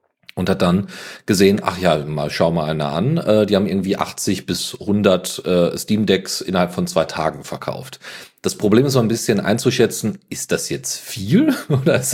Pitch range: 85-130 Hz